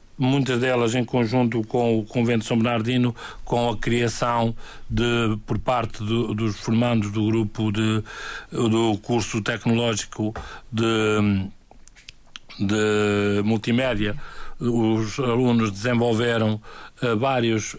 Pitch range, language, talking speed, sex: 115-145 Hz, Portuguese, 110 wpm, male